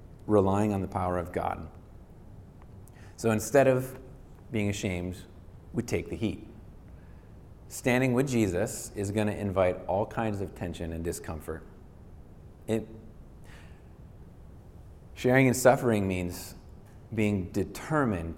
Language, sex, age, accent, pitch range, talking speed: English, male, 30-49, American, 90-115 Hz, 110 wpm